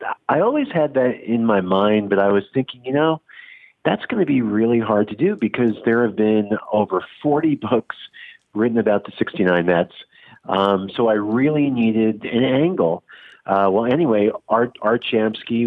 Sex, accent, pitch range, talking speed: male, American, 90-115 Hz, 175 wpm